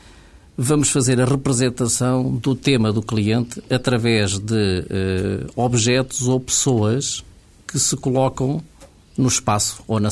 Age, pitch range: 50-69, 105-135 Hz